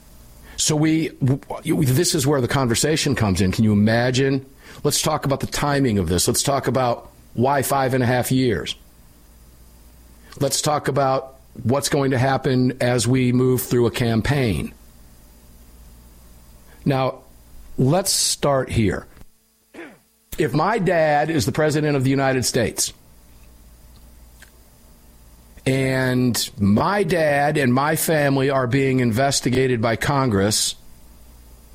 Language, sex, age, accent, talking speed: English, male, 50-69, American, 125 wpm